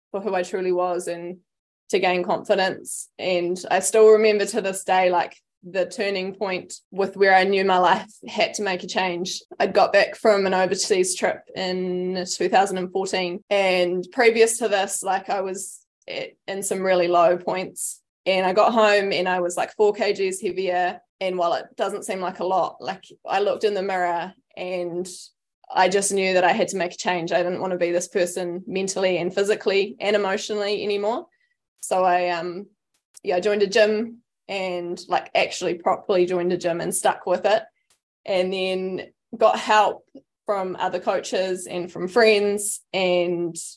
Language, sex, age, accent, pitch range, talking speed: English, female, 20-39, Australian, 180-205 Hz, 180 wpm